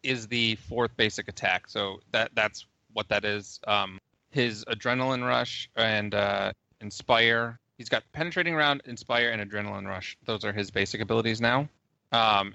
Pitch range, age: 105-130 Hz, 20-39